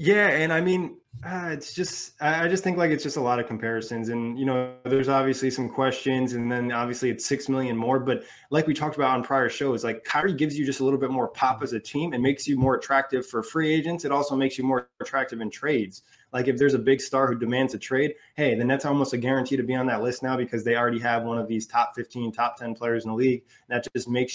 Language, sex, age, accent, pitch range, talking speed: English, male, 20-39, American, 120-140 Hz, 270 wpm